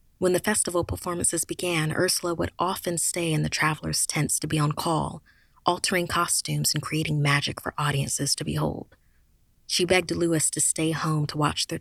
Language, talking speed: English, 180 wpm